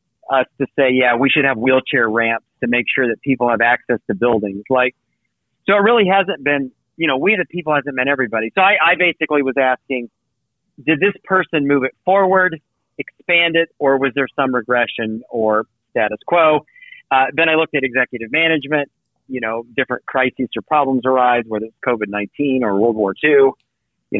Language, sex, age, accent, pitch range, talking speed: English, male, 40-59, American, 120-150 Hz, 190 wpm